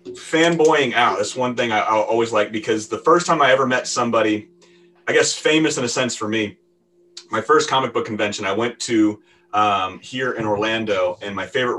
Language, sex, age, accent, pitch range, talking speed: English, male, 30-49, American, 105-125 Hz, 205 wpm